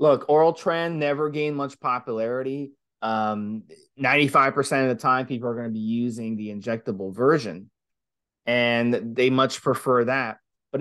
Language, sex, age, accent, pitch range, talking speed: English, male, 20-39, American, 115-140 Hz, 150 wpm